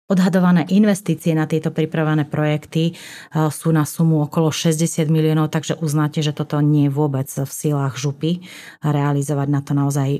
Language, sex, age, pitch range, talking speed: Slovak, female, 30-49, 150-170 Hz, 155 wpm